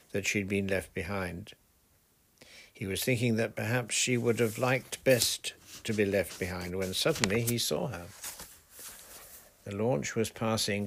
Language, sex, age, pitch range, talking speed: English, male, 60-79, 95-125 Hz, 155 wpm